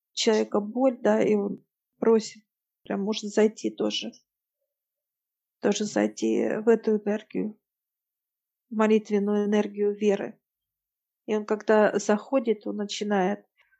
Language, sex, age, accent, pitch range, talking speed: Russian, female, 50-69, native, 205-225 Hz, 110 wpm